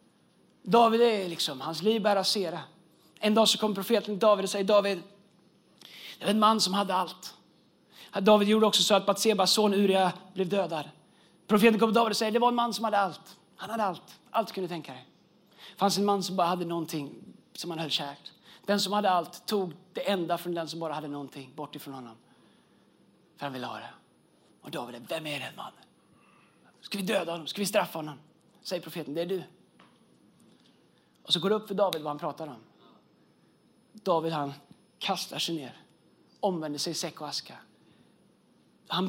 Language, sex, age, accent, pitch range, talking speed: Swedish, male, 30-49, native, 175-230 Hz, 190 wpm